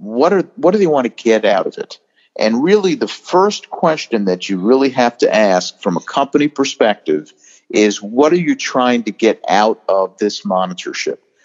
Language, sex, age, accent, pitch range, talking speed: English, male, 50-69, American, 100-140 Hz, 195 wpm